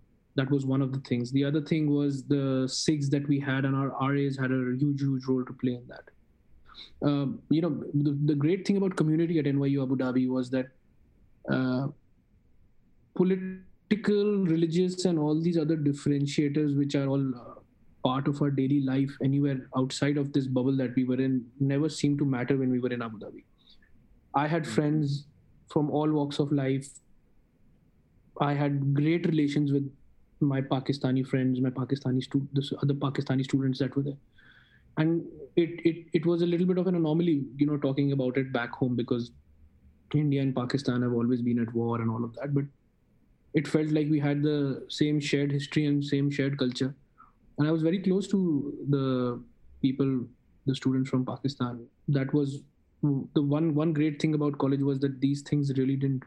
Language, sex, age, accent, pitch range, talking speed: English, male, 20-39, Indian, 130-150 Hz, 185 wpm